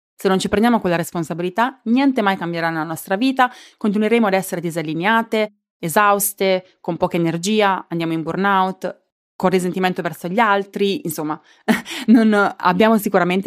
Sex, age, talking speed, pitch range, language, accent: female, 30-49, 135 wpm, 170-210 Hz, Italian, native